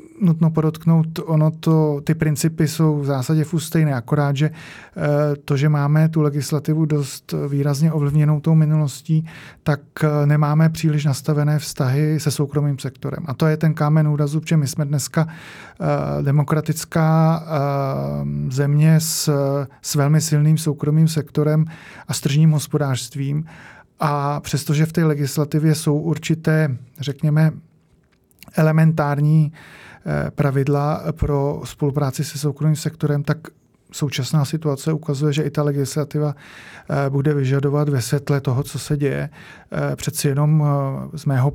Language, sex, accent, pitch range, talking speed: Czech, male, native, 145-160 Hz, 125 wpm